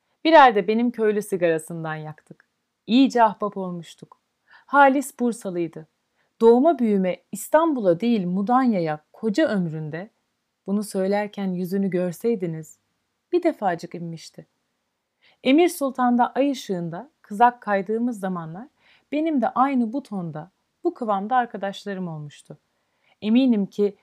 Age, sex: 40-59, female